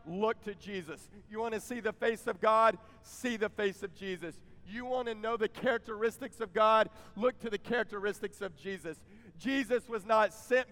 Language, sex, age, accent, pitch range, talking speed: English, male, 40-59, American, 170-230 Hz, 190 wpm